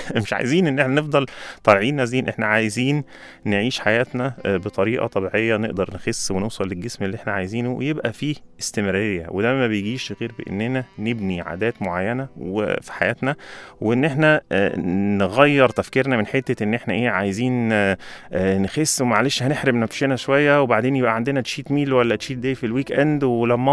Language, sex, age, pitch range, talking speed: Arabic, male, 30-49, 100-130 Hz, 150 wpm